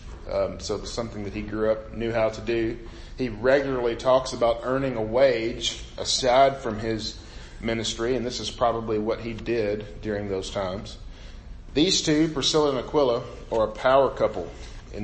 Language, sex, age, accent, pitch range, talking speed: English, male, 40-59, American, 105-130 Hz, 170 wpm